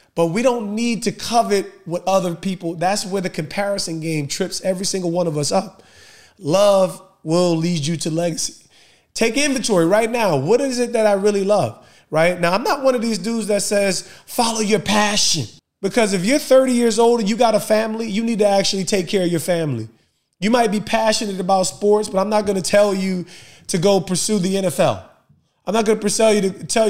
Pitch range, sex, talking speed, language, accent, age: 165-215 Hz, male, 210 wpm, English, American, 30-49